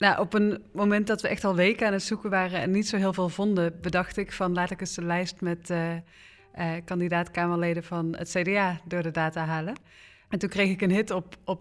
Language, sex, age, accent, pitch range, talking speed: Dutch, female, 30-49, Dutch, 165-185 Hz, 235 wpm